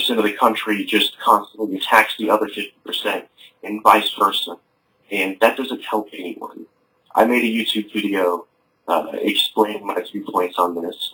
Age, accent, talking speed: 30-49, American, 150 wpm